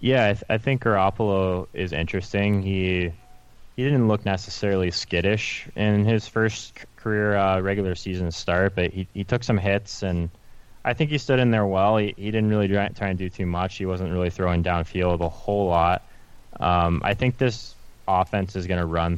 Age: 20-39